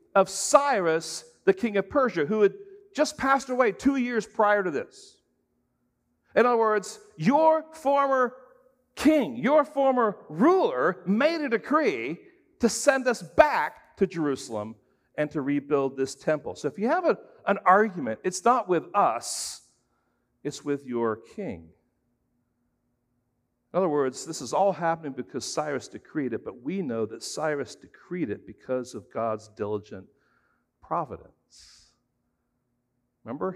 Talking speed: 140 wpm